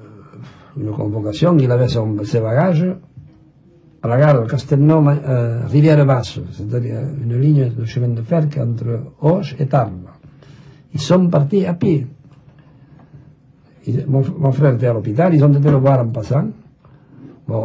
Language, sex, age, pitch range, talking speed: French, male, 60-79, 115-145 Hz, 145 wpm